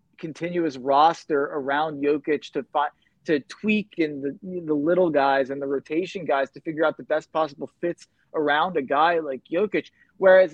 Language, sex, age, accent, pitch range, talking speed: English, male, 20-39, American, 160-210 Hz, 170 wpm